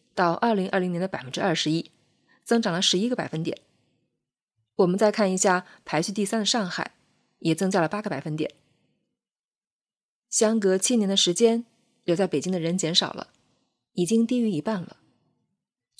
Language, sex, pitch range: Chinese, female, 165-220 Hz